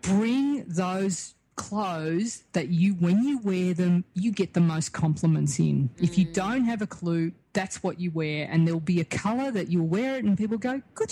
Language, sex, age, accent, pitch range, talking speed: English, female, 30-49, Australian, 170-225 Hz, 205 wpm